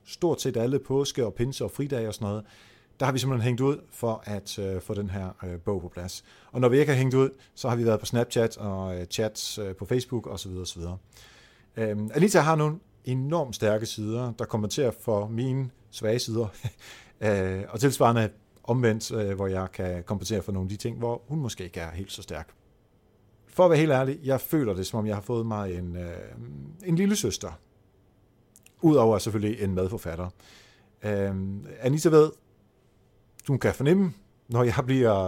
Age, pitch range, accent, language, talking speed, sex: 40-59, 100-130 Hz, native, Danish, 195 wpm, male